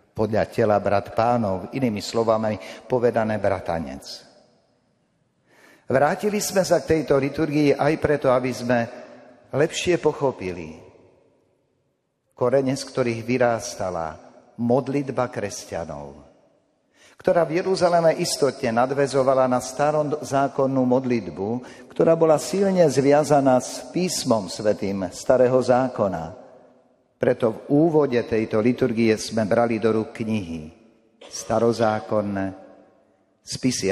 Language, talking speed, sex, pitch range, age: Slovak, 95 wpm, male, 110-145 Hz, 50-69